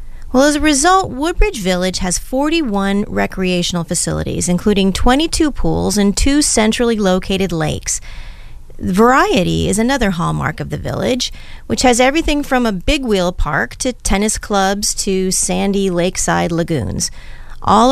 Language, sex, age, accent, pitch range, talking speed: English, female, 30-49, American, 180-245 Hz, 135 wpm